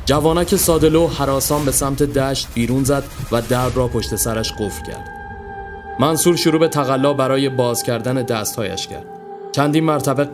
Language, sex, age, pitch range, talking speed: Persian, male, 30-49, 115-140 Hz, 150 wpm